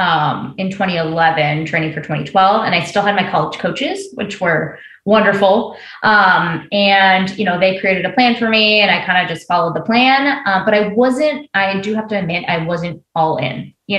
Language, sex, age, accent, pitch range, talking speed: English, female, 20-39, American, 180-240 Hz, 205 wpm